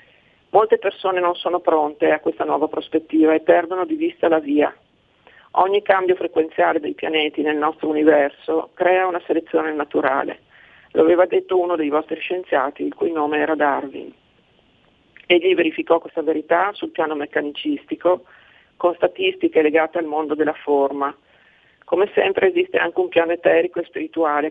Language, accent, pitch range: Italian, native, 155-180 Hz